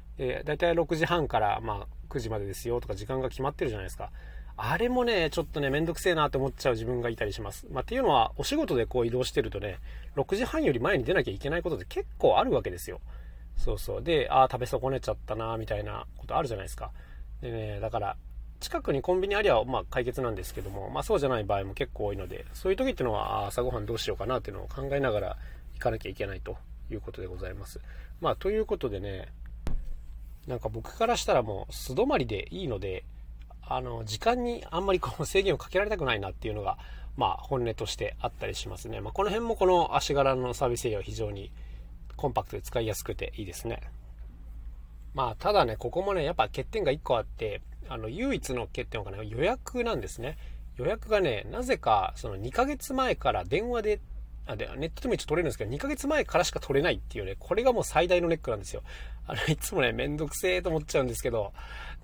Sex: male